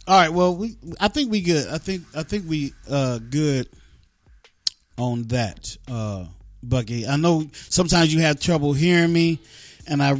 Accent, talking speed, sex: American, 170 wpm, male